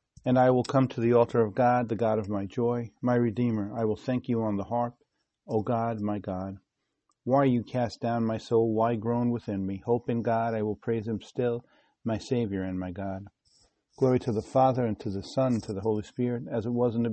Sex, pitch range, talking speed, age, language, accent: male, 105-120 Hz, 240 wpm, 50-69, English, American